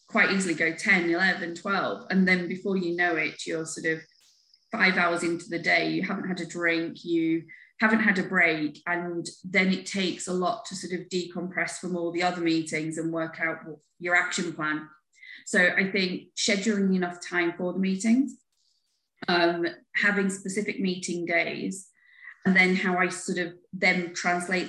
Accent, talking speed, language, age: British, 180 wpm, Turkish, 30-49